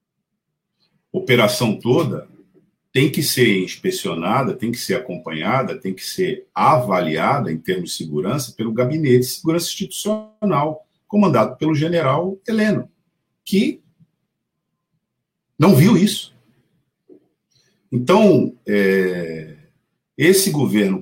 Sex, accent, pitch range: male, Brazilian, 125-195 Hz